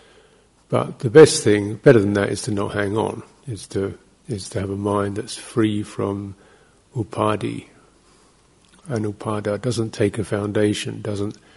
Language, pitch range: English, 100-125 Hz